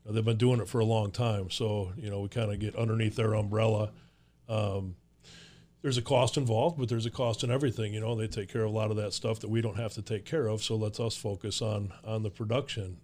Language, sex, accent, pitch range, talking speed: English, male, American, 110-125 Hz, 260 wpm